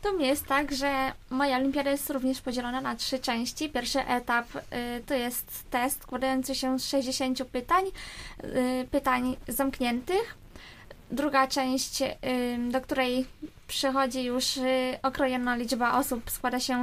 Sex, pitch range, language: female, 255-290 Hz, Polish